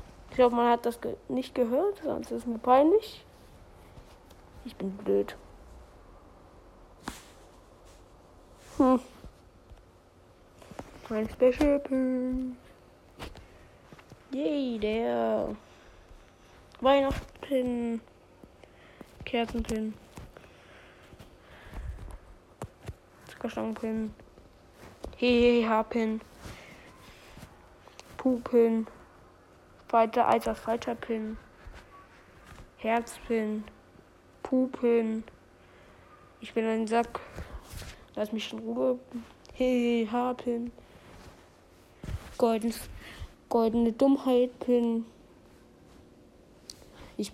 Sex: female